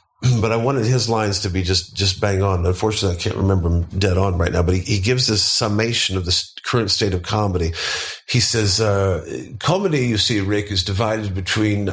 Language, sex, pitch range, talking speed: English, male, 90-115 Hz, 210 wpm